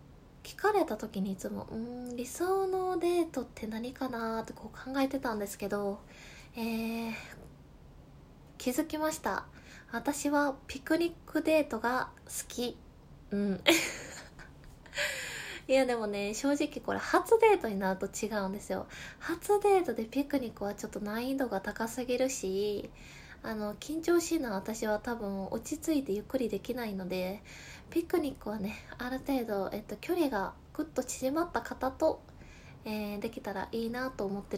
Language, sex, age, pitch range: Japanese, female, 20-39, 205-275 Hz